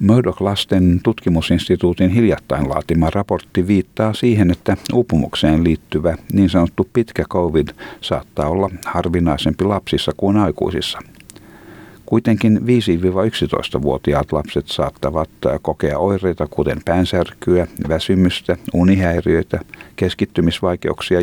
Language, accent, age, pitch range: Finnish, native, 60-79, 75-95 Hz